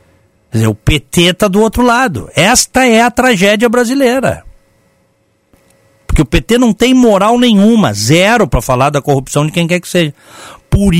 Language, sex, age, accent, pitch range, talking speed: Portuguese, male, 50-69, Brazilian, 110-180 Hz, 170 wpm